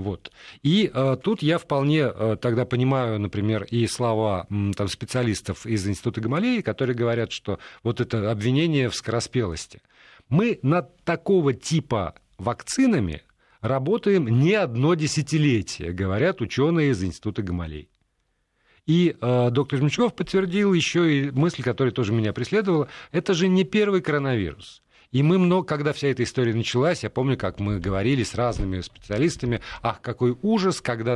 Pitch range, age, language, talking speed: 110-145 Hz, 40-59, Russian, 150 wpm